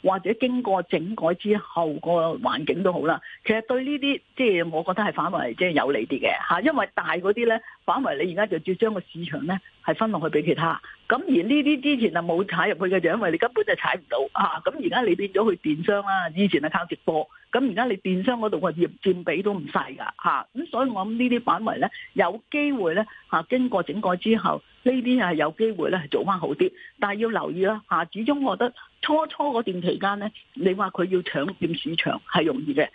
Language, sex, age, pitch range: Chinese, female, 40-59, 175-235 Hz